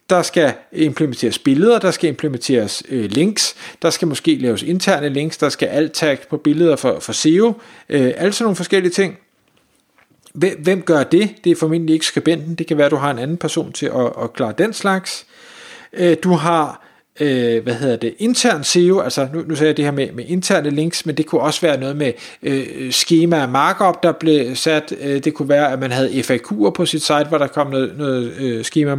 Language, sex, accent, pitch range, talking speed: Danish, male, native, 140-175 Hz, 215 wpm